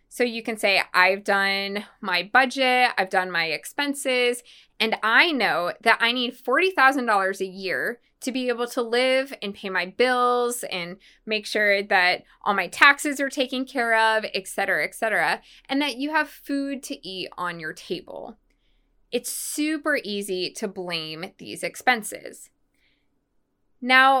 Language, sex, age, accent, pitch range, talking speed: English, female, 20-39, American, 205-275 Hz, 155 wpm